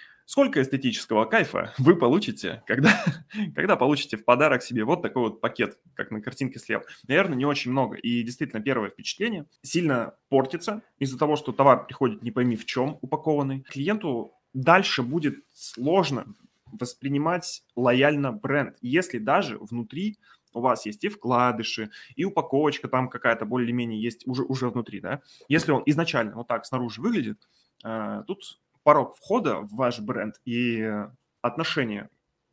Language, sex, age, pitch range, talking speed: Russian, male, 20-39, 110-145 Hz, 225 wpm